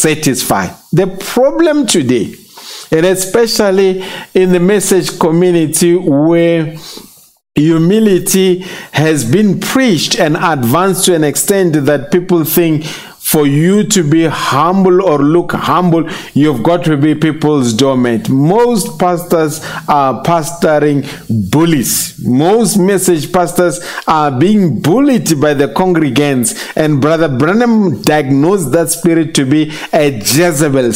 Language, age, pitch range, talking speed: English, 50-69, 150-195 Hz, 120 wpm